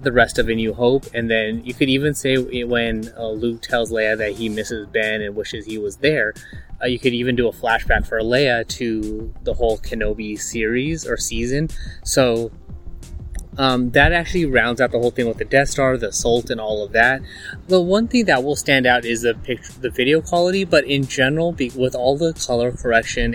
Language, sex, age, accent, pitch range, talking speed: English, male, 20-39, American, 110-135 Hz, 210 wpm